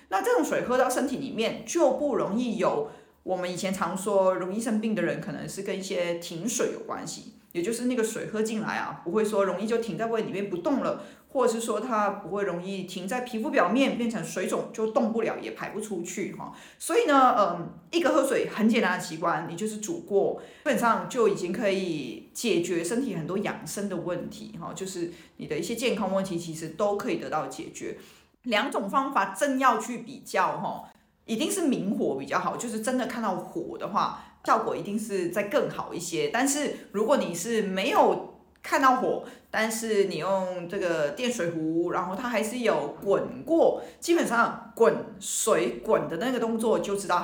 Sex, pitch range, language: female, 185-240 Hz, Chinese